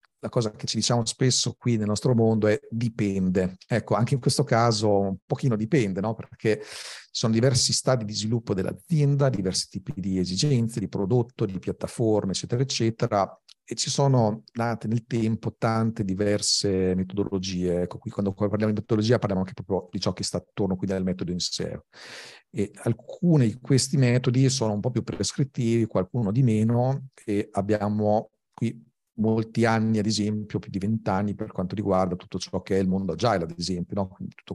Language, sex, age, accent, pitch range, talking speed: Italian, male, 40-59, native, 100-120 Hz, 180 wpm